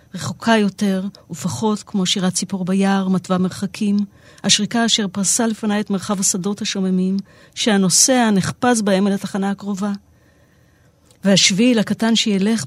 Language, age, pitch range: Hebrew, 40-59, 185-220 Hz